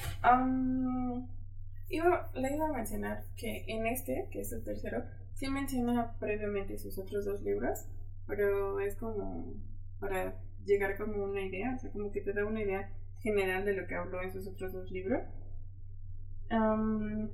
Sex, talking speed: female, 165 wpm